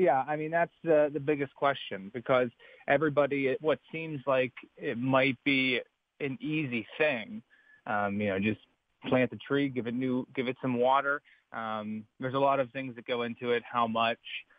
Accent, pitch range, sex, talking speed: American, 115-135 Hz, male, 175 wpm